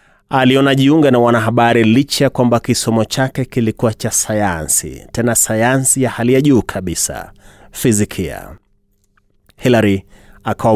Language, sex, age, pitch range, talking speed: Swahili, male, 30-49, 100-125 Hz, 125 wpm